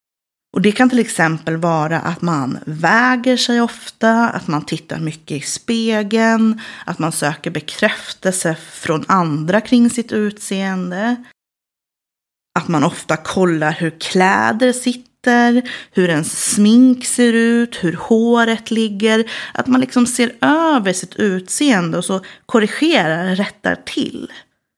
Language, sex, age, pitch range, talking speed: Swedish, female, 30-49, 180-235 Hz, 130 wpm